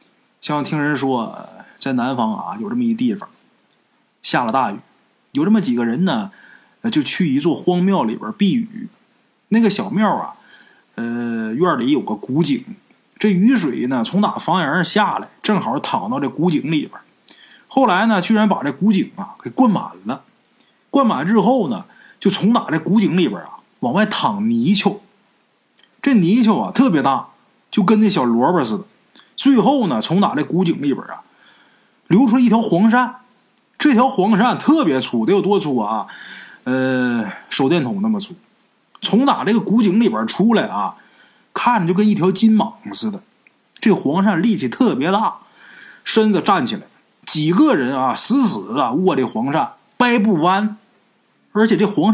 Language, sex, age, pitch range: Chinese, male, 20-39, 190-235 Hz